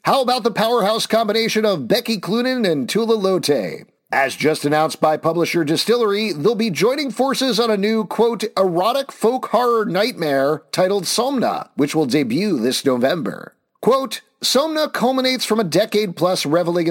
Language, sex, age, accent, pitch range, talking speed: English, male, 50-69, American, 155-220 Hz, 155 wpm